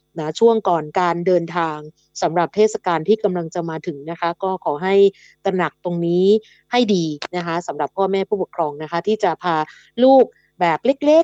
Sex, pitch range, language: female, 170-215 Hz, Thai